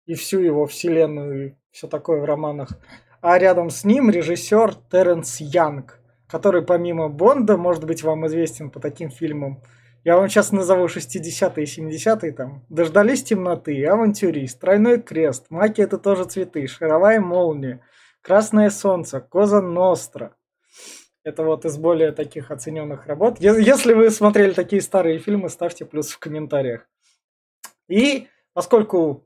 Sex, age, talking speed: male, 20-39, 140 wpm